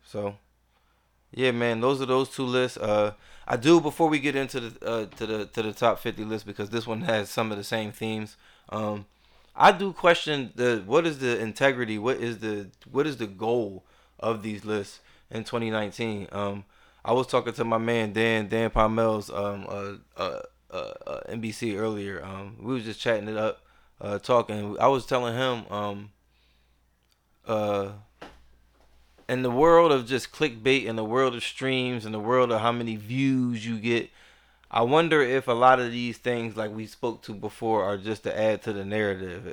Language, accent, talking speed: English, American, 190 wpm